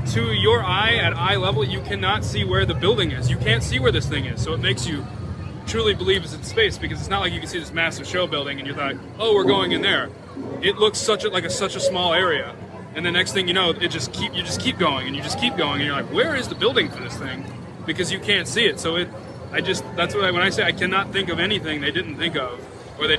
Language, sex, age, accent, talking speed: English, male, 20-39, American, 280 wpm